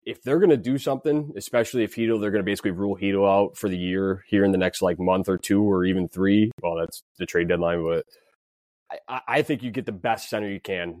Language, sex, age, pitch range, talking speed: English, male, 20-39, 95-120 Hz, 250 wpm